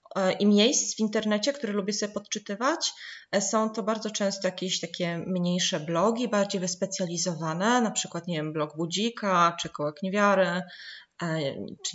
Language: Polish